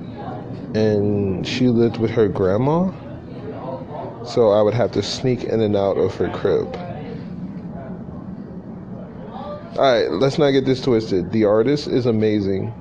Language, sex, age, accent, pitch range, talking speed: English, male, 20-39, American, 100-125 Hz, 130 wpm